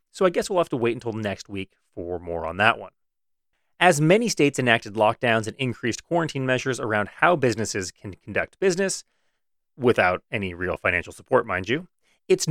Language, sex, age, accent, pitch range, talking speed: English, male, 30-49, American, 115-175 Hz, 180 wpm